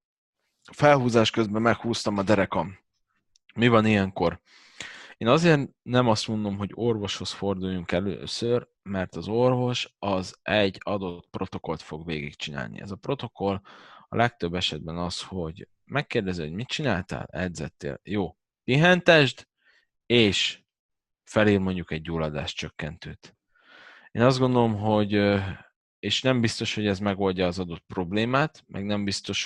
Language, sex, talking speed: Hungarian, male, 130 wpm